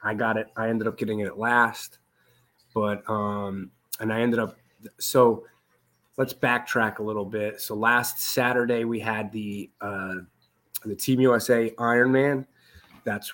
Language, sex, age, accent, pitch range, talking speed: English, male, 30-49, American, 110-135 Hz, 155 wpm